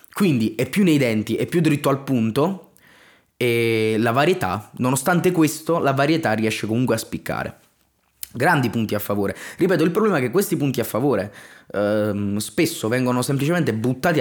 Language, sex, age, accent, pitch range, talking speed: Italian, male, 20-39, native, 110-150 Hz, 165 wpm